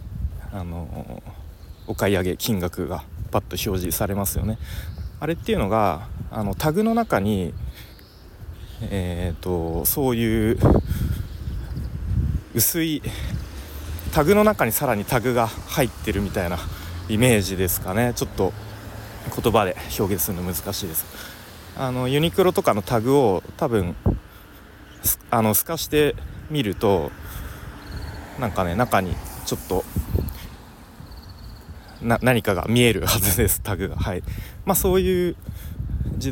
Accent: native